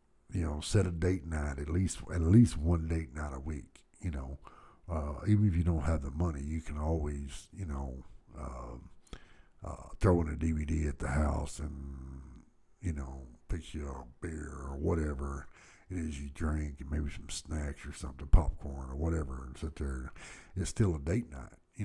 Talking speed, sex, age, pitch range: 190 wpm, male, 60-79, 70-85 Hz